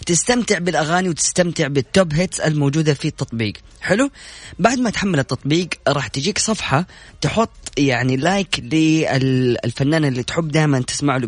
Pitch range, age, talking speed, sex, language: 135-185 Hz, 20-39, 135 wpm, female, Arabic